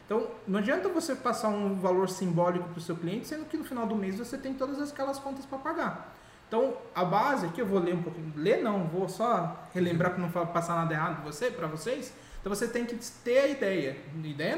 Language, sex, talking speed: Portuguese, male, 220 wpm